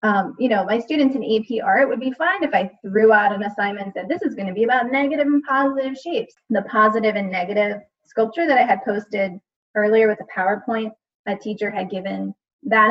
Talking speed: 215 wpm